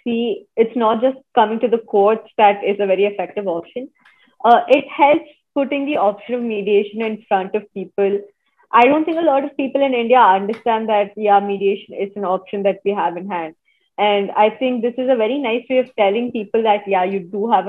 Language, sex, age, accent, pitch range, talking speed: English, female, 20-39, Indian, 200-245 Hz, 215 wpm